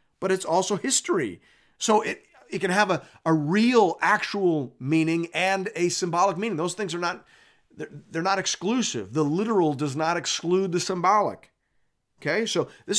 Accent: American